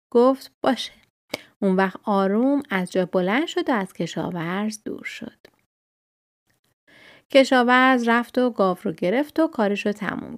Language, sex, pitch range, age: Persian, female, 185-255 Hz, 30-49